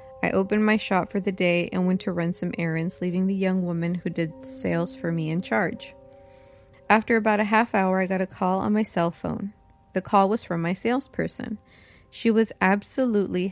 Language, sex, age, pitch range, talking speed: English, female, 20-39, 170-200 Hz, 205 wpm